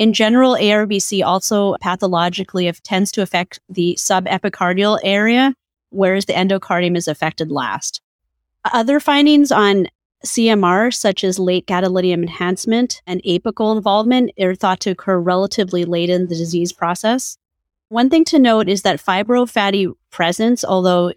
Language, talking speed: English, 135 wpm